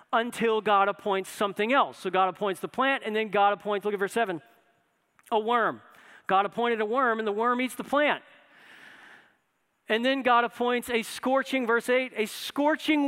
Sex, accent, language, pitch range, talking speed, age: male, American, English, 195-240 Hz, 185 wpm, 40-59